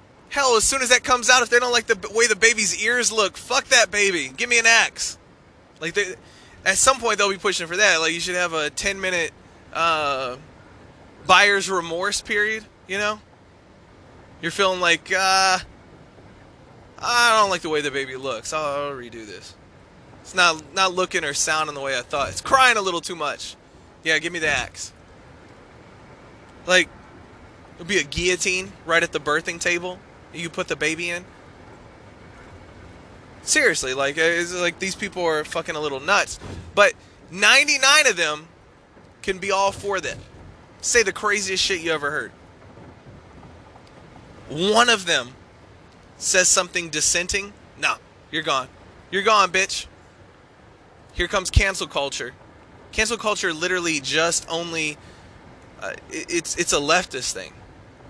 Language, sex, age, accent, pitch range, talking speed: English, male, 20-39, American, 155-210 Hz, 155 wpm